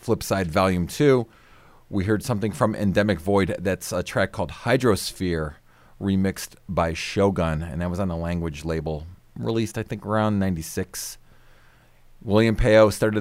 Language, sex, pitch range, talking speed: English, male, 90-105 Hz, 145 wpm